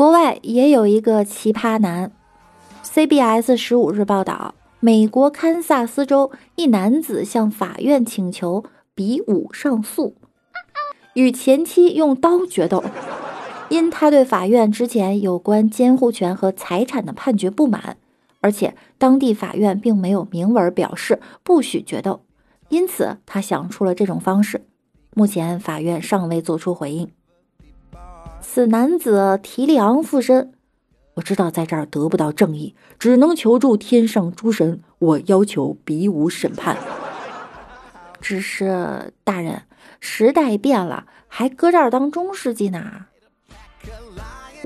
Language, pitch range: Chinese, 190-265 Hz